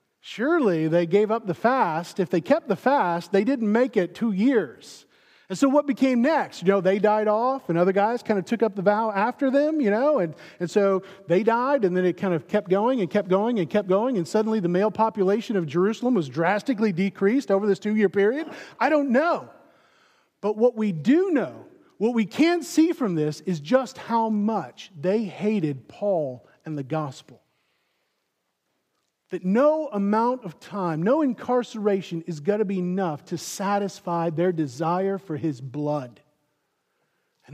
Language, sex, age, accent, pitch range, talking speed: English, male, 40-59, American, 185-250 Hz, 185 wpm